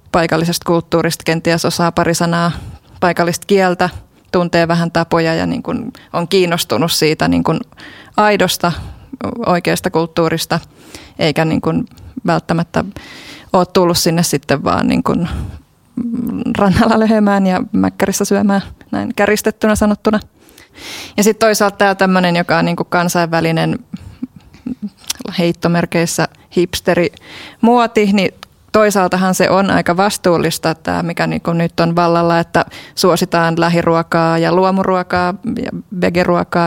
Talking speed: 110 wpm